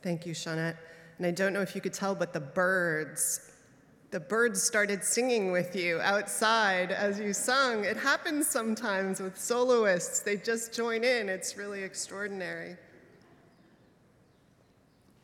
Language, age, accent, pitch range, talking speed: English, 30-49, American, 165-200 Hz, 140 wpm